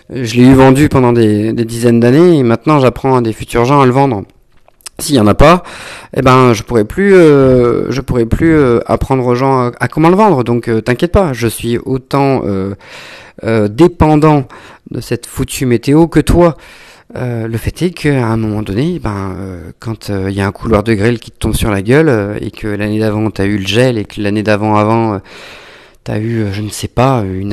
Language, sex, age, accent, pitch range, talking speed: French, male, 40-59, French, 110-140 Hz, 230 wpm